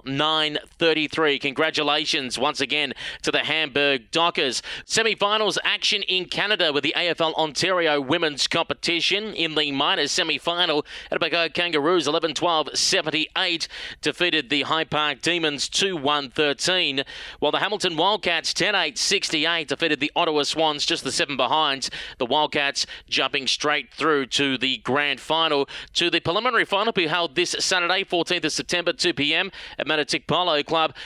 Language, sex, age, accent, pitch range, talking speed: English, male, 30-49, Australian, 145-175 Hz, 130 wpm